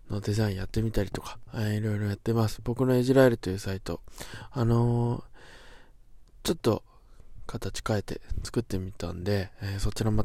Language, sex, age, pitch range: Japanese, male, 20-39, 100-115 Hz